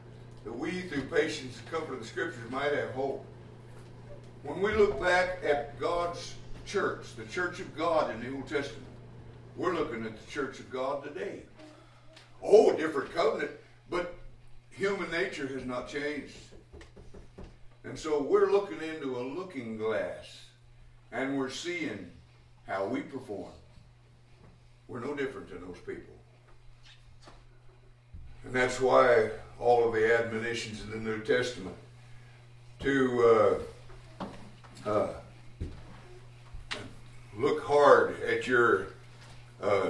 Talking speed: 125 wpm